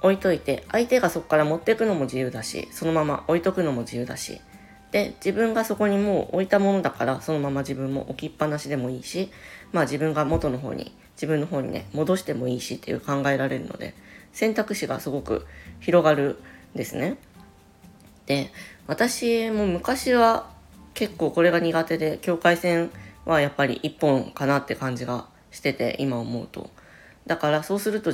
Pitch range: 125-170 Hz